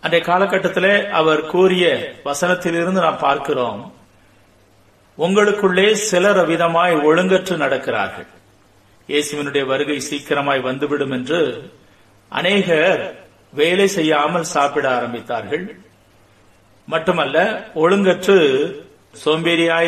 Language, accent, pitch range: Tamil, native, 135-180 Hz